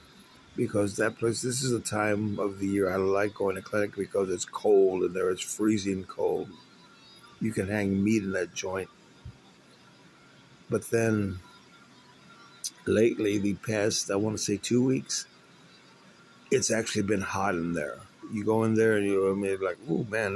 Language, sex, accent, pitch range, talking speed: English, male, American, 95-110 Hz, 170 wpm